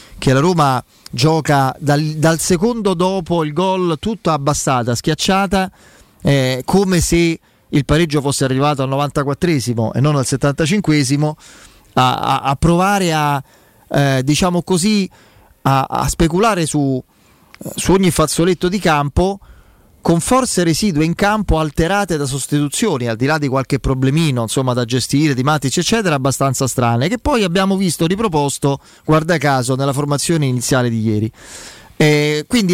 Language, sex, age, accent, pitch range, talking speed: Italian, male, 30-49, native, 135-180 Hz, 145 wpm